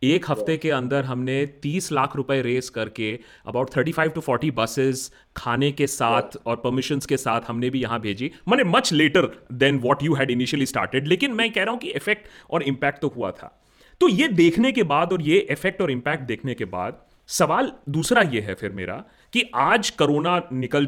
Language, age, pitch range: Hindi, 30-49, 120-180 Hz